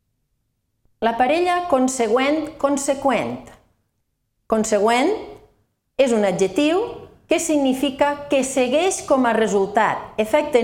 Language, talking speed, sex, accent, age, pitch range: Spanish, 90 wpm, female, Spanish, 40-59, 215-285 Hz